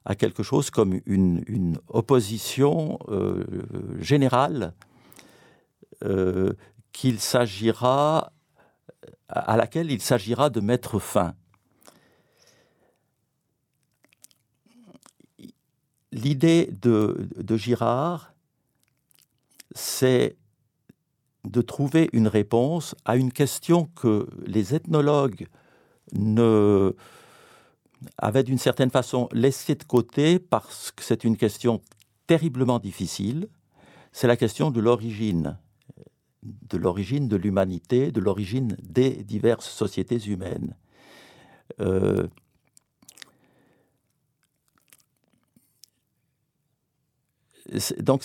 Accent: French